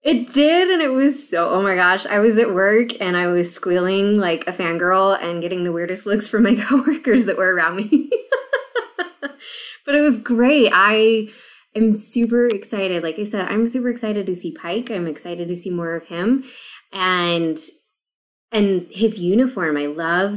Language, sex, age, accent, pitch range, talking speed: English, female, 20-39, American, 180-245 Hz, 185 wpm